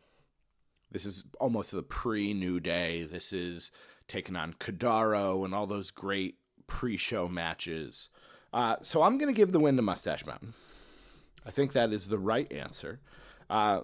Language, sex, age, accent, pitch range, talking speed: English, male, 30-49, American, 100-135 Hz, 155 wpm